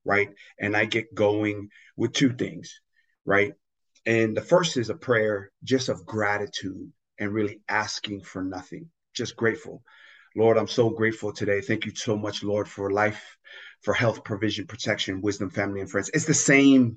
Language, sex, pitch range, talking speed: English, male, 105-135 Hz, 170 wpm